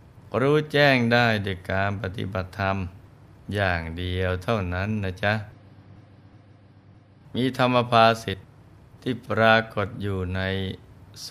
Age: 20-39